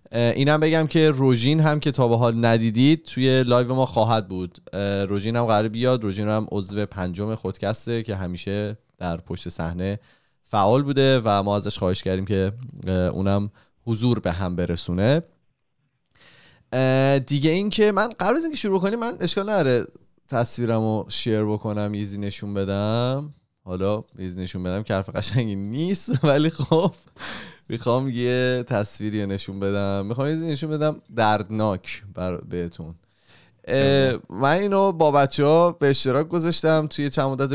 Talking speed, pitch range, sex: 145 wpm, 100-140 Hz, male